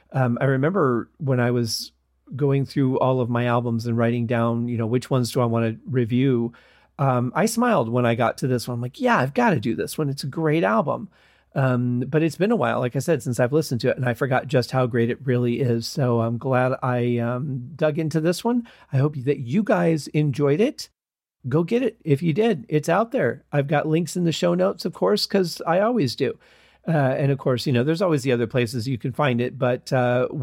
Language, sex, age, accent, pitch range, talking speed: English, male, 40-59, American, 120-150 Hz, 245 wpm